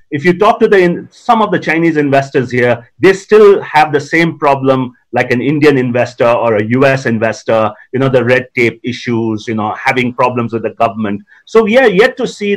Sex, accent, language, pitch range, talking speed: male, native, Hindi, 135-185 Hz, 215 wpm